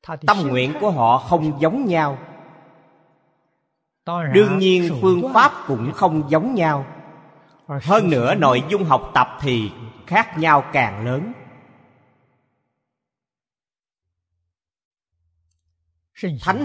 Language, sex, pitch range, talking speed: Vietnamese, male, 130-180 Hz, 95 wpm